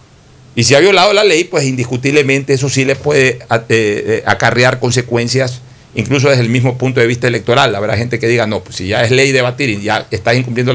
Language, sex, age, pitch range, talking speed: Spanish, male, 40-59, 115-140 Hz, 205 wpm